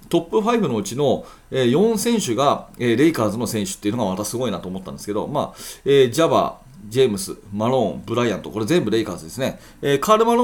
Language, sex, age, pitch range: Japanese, male, 40-59, 110-165 Hz